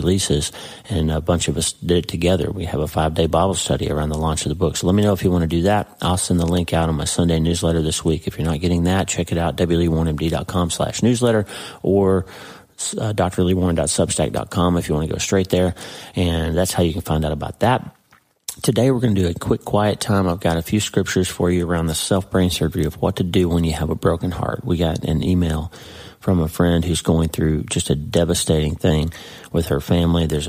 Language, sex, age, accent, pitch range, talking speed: English, male, 30-49, American, 80-95 Hz, 235 wpm